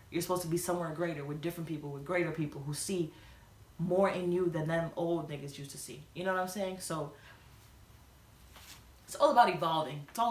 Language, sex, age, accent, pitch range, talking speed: English, female, 20-39, American, 155-190 Hz, 210 wpm